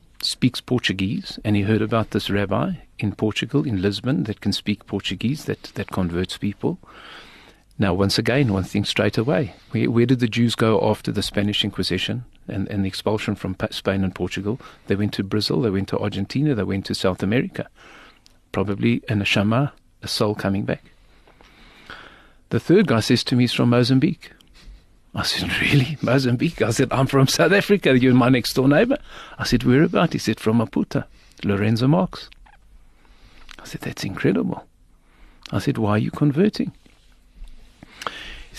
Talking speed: 170 wpm